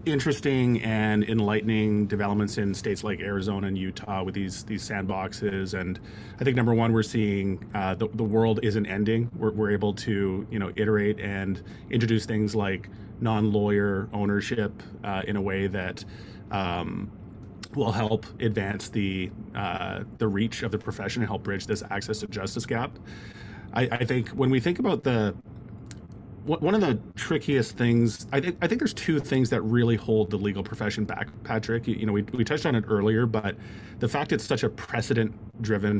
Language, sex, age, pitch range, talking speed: English, male, 30-49, 100-115 Hz, 180 wpm